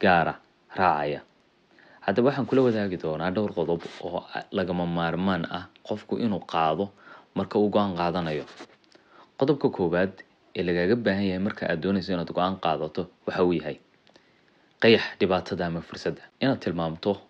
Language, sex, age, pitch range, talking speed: English, male, 30-49, 85-105 Hz, 60 wpm